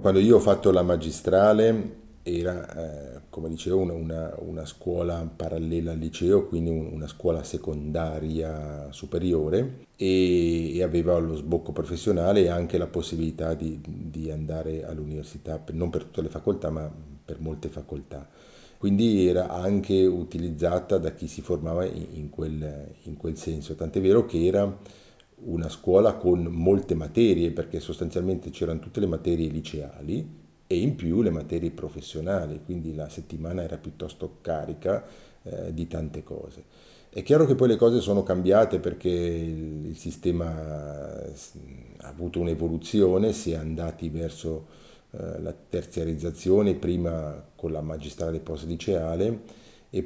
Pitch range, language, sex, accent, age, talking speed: 80-90 Hz, English, male, Italian, 40-59, 140 wpm